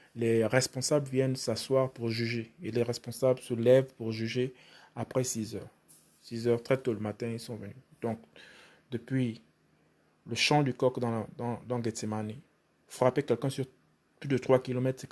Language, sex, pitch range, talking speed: French, male, 115-135 Hz, 170 wpm